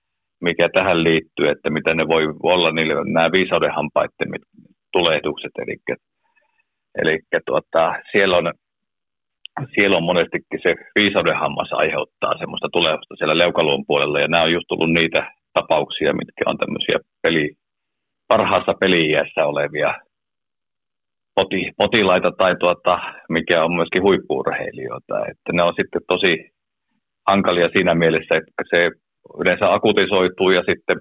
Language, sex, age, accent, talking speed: Finnish, male, 40-59, native, 125 wpm